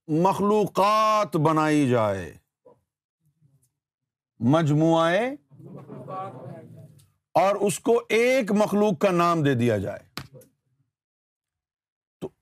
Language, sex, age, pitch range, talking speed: Urdu, male, 50-69, 140-200 Hz, 70 wpm